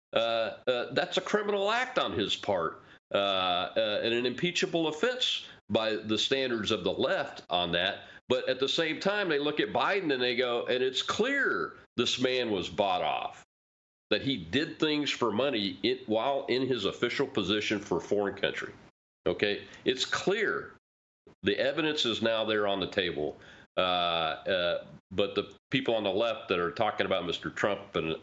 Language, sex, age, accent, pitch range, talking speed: English, male, 40-59, American, 105-155 Hz, 180 wpm